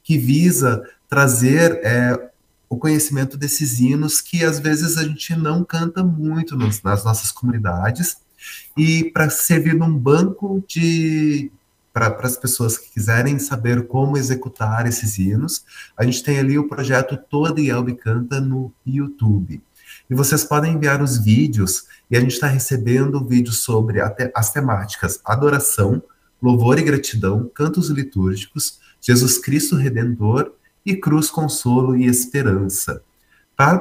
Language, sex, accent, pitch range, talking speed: Portuguese, male, Brazilian, 110-145 Hz, 135 wpm